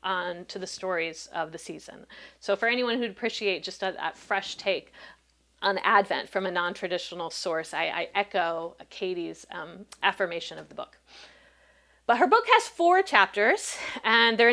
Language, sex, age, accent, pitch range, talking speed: English, female, 40-59, American, 180-250 Hz, 165 wpm